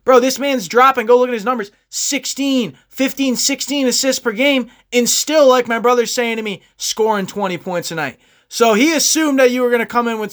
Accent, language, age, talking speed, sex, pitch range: American, English, 20-39, 225 wpm, male, 205-255 Hz